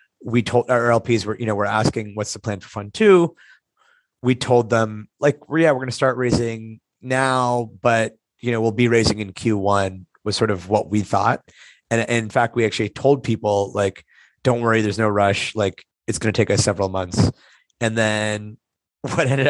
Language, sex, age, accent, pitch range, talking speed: English, male, 30-49, American, 105-120 Hz, 205 wpm